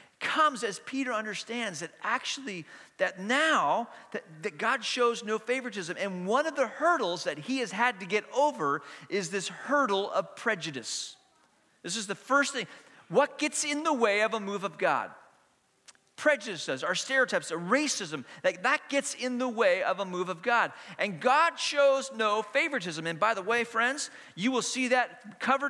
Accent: American